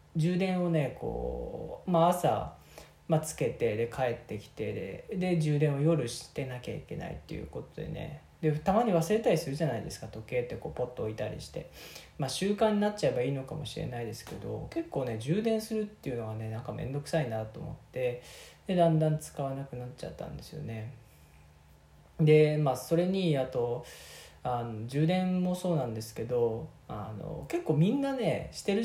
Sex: male